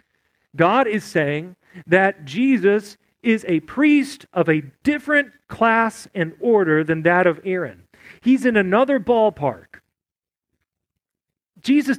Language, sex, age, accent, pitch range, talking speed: English, male, 40-59, American, 165-230 Hz, 115 wpm